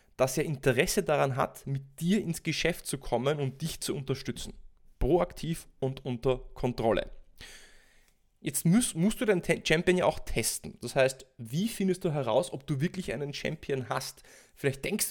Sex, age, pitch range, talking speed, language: male, 20-39, 130-165 Hz, 165 wpm, German